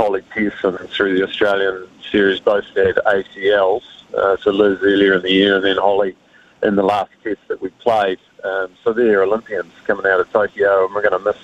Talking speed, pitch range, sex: 210 wpm, 105-120 Hz, male